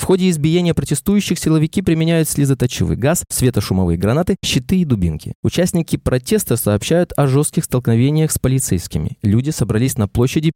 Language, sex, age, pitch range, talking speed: Russian, male, 20-39, 110-165 Hz, 140 wpm